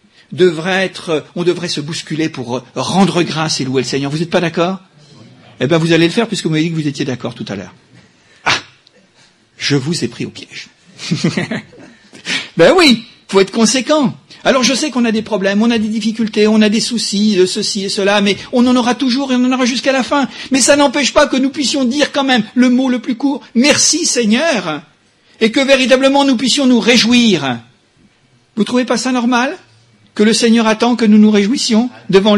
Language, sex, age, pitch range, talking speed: French, male, 50-69, 160-235 Hz, 215 wpm